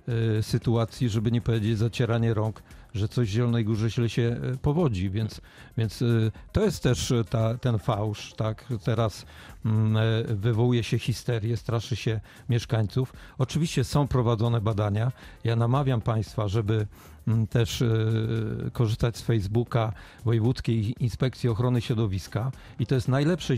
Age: 50-69